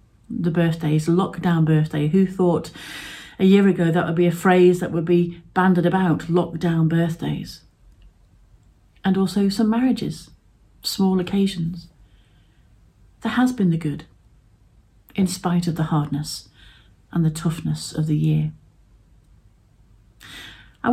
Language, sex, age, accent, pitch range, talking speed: English, female, 40-59, British, 155-190 Hz, 125 wpm